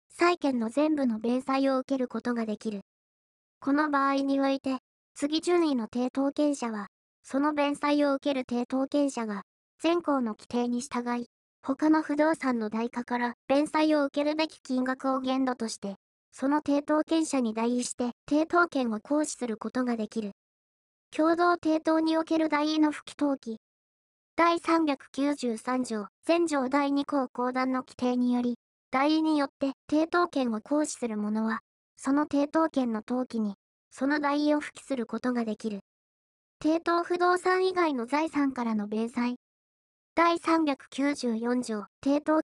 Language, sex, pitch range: Japanese, male, 240-300 Hz